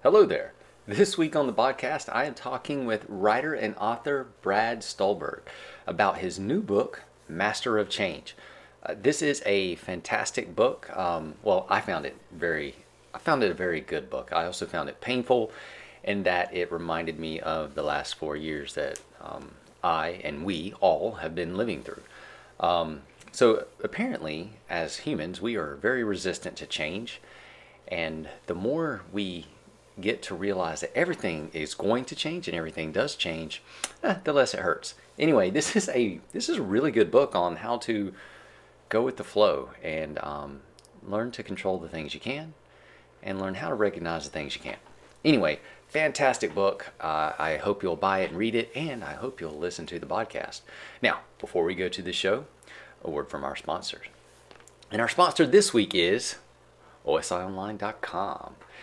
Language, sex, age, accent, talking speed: English, male, 30-49, American, 180 wpm